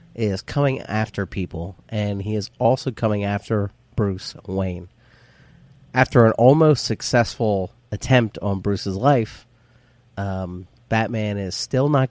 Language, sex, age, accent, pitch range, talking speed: English, male, 30-49, American, 100-120 Hz, 125 wpm